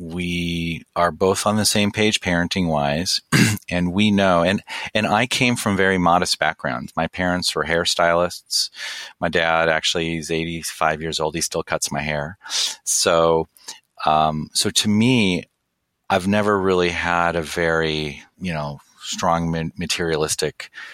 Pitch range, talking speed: 80-90 Hz, 145 wpm